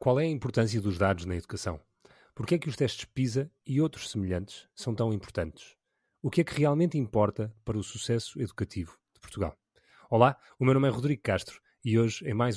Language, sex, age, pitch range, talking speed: Portuguese, male, 30-49, 105-130 Hz, 210 wpm